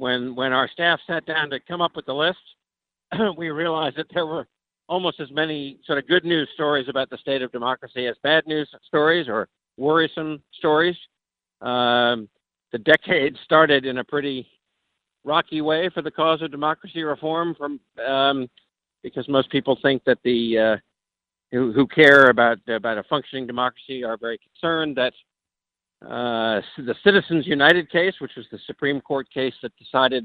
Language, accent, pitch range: English, American, 125-155 Hz